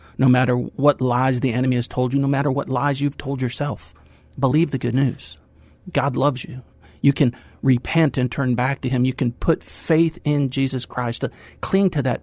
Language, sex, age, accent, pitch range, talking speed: English, male, 40-59, American, 125-145 Hz, 205 wpm